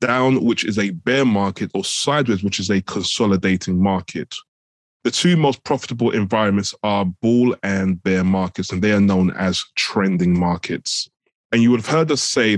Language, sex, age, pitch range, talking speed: English, male, 20-39, 95-115 Hz, 175 wpm